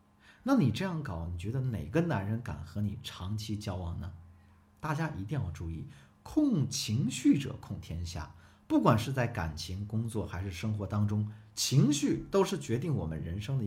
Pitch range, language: 100-140 Hz, Chinese